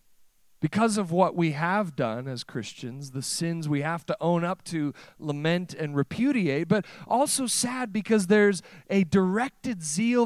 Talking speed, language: 160 wpm, English